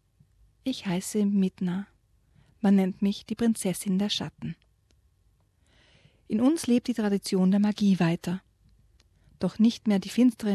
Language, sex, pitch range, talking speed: German, female, 175-210 Hz, 130 wpm